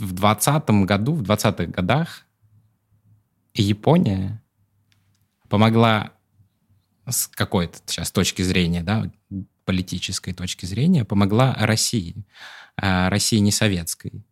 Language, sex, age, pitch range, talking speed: Russian, male, 20-39, 95-115 Hz, 95 wpm